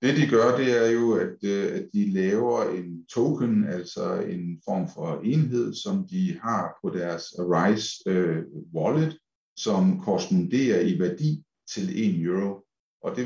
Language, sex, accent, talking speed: Danish, male, native, 160 wpm